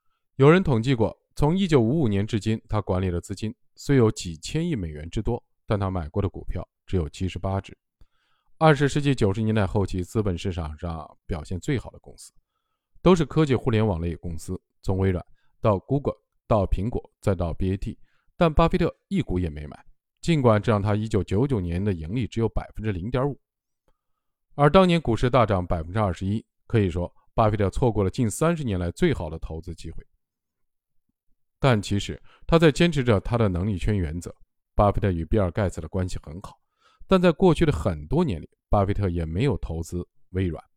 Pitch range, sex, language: 90-135 Hz, male, Chinese